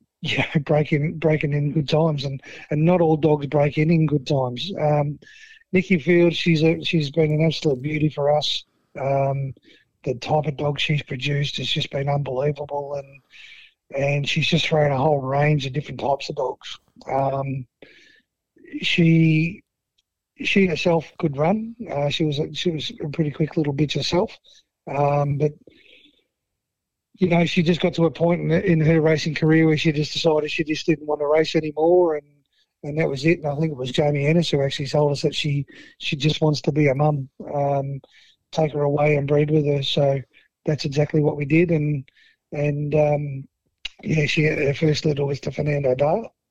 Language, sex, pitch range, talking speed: English, male, 145-160 Hz, 185 wpm